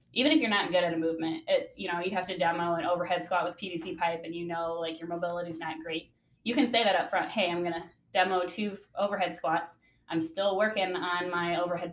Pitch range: 165-185 Hz